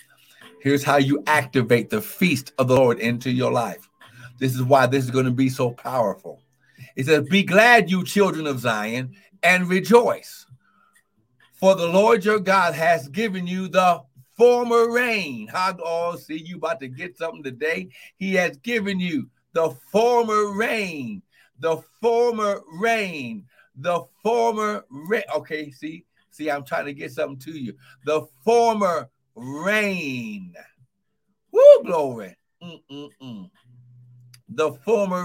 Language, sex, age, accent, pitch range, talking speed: English, male, 60-79, American, 140-210 Hz, 145 wpm